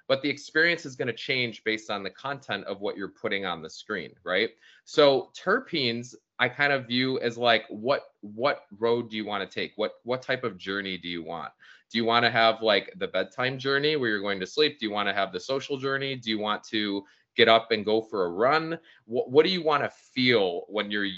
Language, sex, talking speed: English, male, 240 wpm